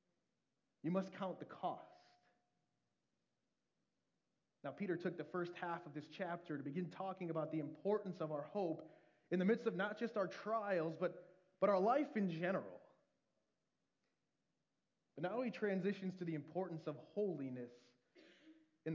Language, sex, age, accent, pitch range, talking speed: English, male, 30-49, American, 150-195 Hz, 150 wpm